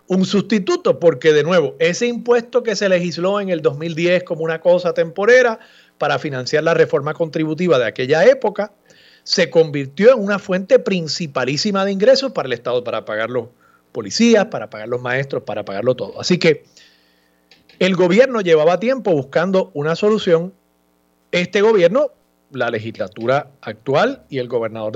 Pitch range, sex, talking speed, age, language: 140-205 Hz, male, 155 wpm, 40-59, Spanish